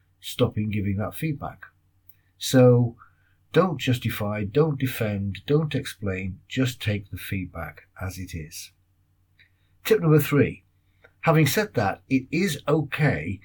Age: 50-69